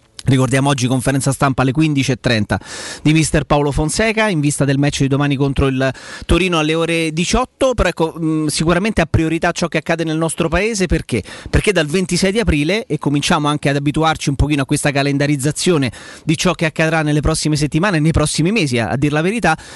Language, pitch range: Italian, 135-165 Hz